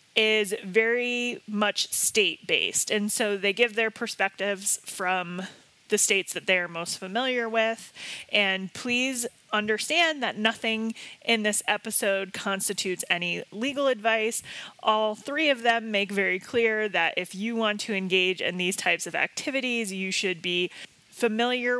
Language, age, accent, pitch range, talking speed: English, 30-49, American, 190-240 Hz, 145 wpm